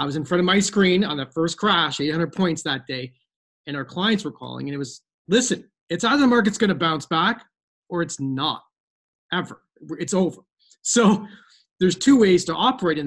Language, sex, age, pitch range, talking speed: English, male, 30-49, 145-185 Hz, 205 wpm